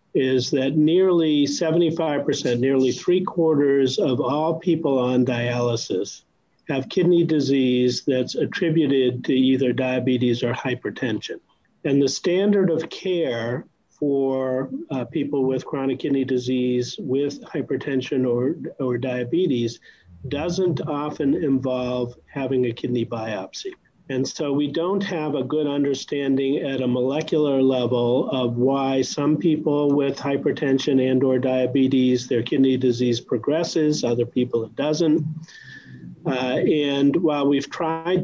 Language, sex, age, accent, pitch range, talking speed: English, male, 50-69, American, 130-155 Hz, 125 wpm